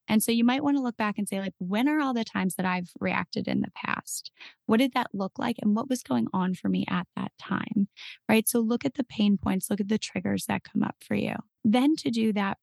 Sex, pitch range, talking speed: female, 195-235 Hz, 270 wpm